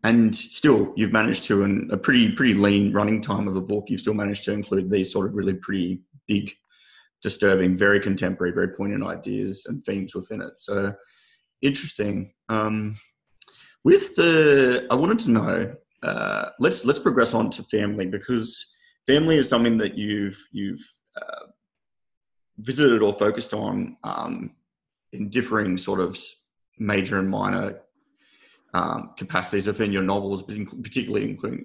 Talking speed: 155 wpm